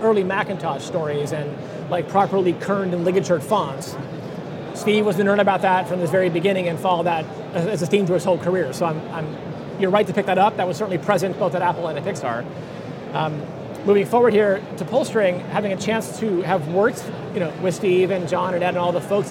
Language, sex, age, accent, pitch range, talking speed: English, male, 30-49, American, 175-210 Hz, 230 wpm